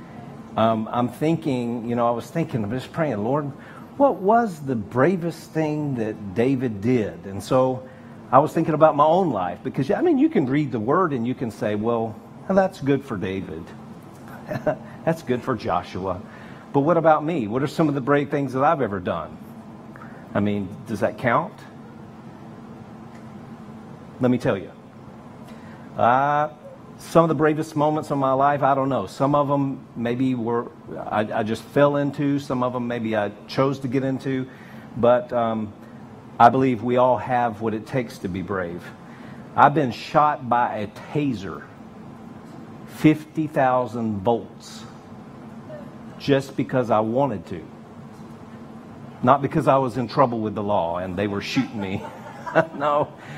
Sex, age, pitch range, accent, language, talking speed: male, 50-69, 115-145 Hz, American, English, 165 wpm